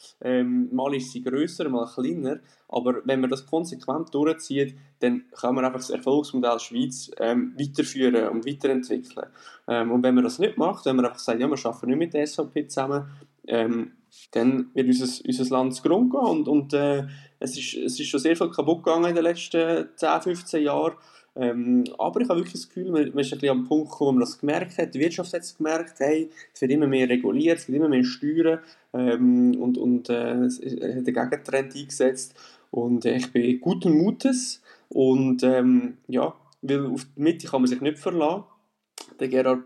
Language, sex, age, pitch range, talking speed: German, male, 20-39, 130-160 Hz, 195 wpm